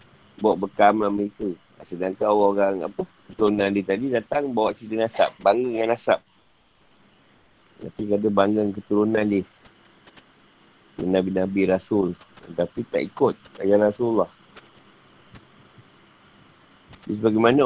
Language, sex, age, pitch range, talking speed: Malay, male, 50-69, 100-120 Hz, 110 wpm